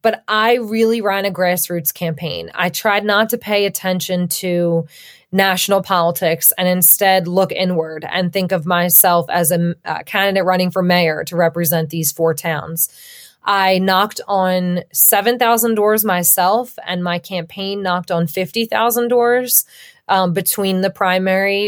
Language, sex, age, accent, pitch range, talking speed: English, female, 20-39, American, 170-195 Hz, 145 wpm